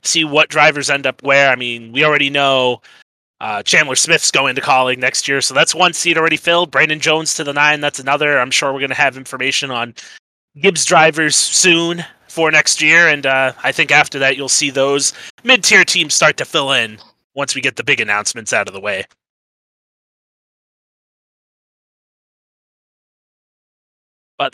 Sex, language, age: male, English, 30-49